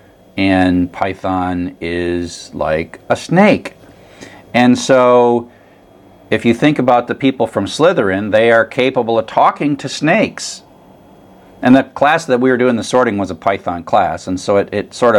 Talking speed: 160 wpm